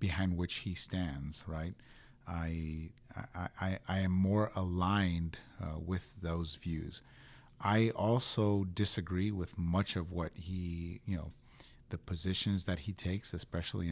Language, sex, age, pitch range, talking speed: English, male, 40-59, 85-110 Hz, 140 wpm